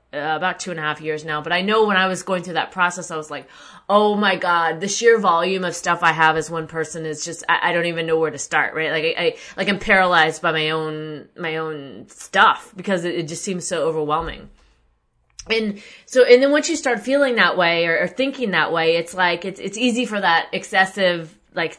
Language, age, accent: English, 20-39, American